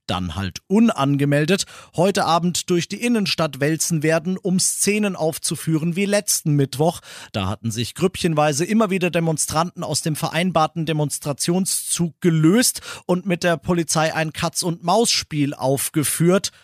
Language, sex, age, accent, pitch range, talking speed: German, male, 40-59, German, 135-180 Hz, 135 wpm